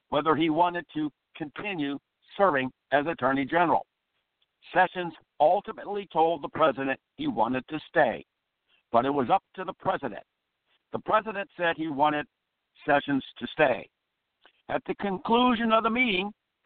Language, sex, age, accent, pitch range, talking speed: English, male, 60-79, American, 145-190 Hz, 140 wpm